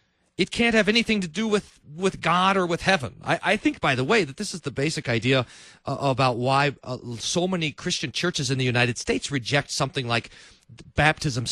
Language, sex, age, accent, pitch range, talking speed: English, male, 40-59, American, 125-185 Hz, 210 wpm